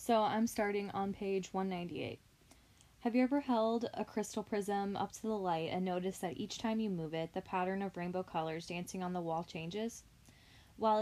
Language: English